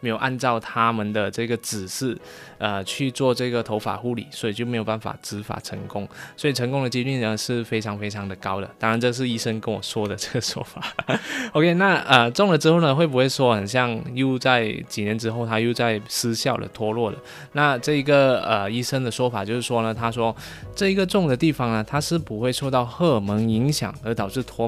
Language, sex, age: Chinese, male, 20-39